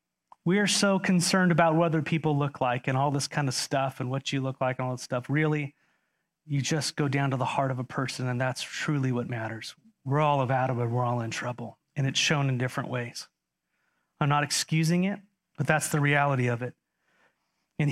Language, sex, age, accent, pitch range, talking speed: English, male, 30-49, American, 130-165 Hz, 220 wpm